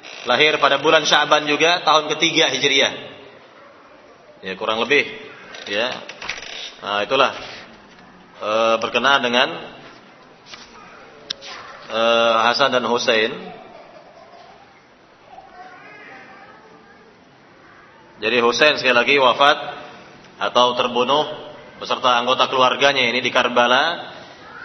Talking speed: 85 wpm